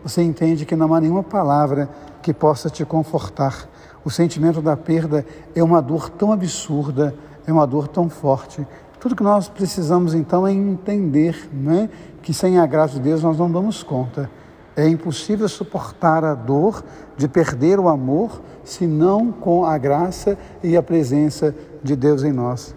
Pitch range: 145-170 Hz